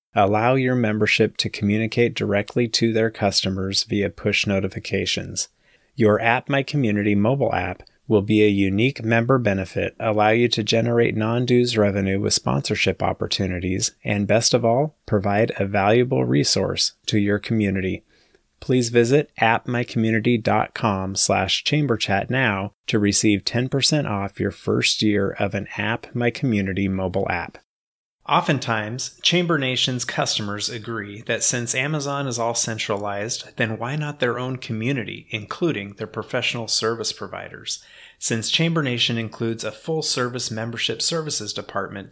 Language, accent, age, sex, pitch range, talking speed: English, American, 30-49, male, 105-125 Hz, 135 wpm